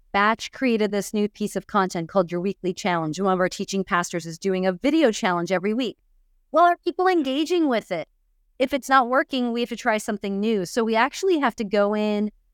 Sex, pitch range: female, 205-305 Hz